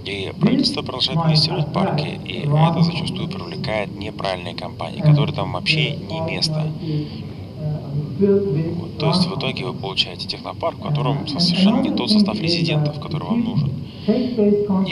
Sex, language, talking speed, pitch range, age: male, Russian, 140 wpm, 145-195 Hz, 60-79